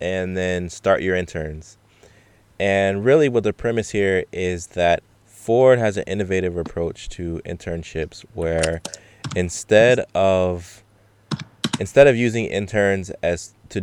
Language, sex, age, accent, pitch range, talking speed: English, male, 20-39, American, 85-105 Hz, 125 wpm